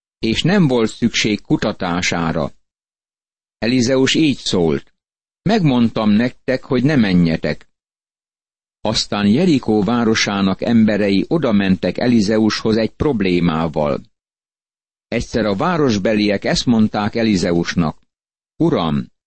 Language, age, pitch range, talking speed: Hungarian, 50-69, 100-125 Hz, 90 wpm